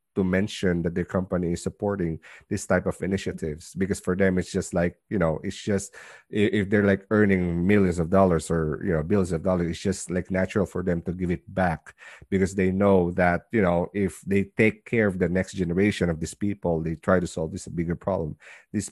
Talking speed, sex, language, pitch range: 220 wpm, male, English, 90-100 Hz